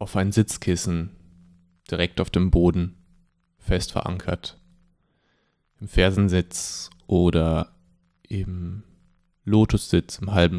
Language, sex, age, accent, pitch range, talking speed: German, male, 30-49, German, 85-100 Hz, 90 wpm